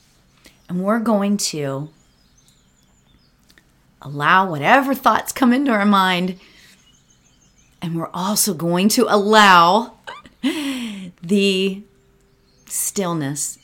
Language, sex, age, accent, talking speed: English, female, 30-49, American, 85 wpm